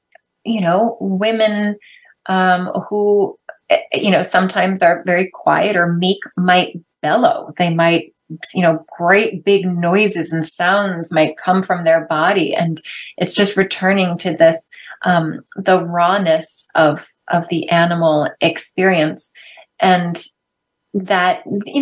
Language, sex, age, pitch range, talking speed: English, female, 30-49, 165-205 Hz, 125 wpm